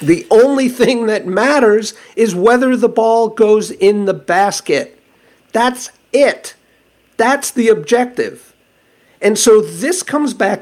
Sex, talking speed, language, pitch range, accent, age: male, 130 wpm, English, 150-235 Hz, American, 50-69